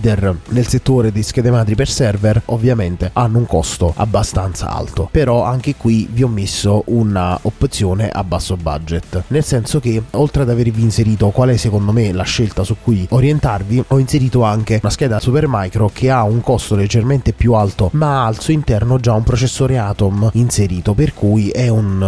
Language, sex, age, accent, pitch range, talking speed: Italian, male, 20-39, native, 100-125 Hz, 180 wpm